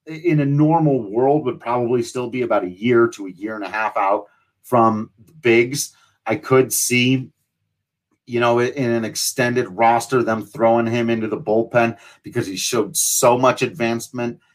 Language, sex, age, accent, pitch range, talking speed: English, male, 40-59, American, 115-145 Hz, 170 wpm